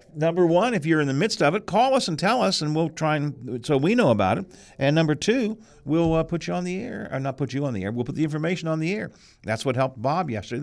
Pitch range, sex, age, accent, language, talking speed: 110-155 Hz, male, 50-69, American, English, 295 wpm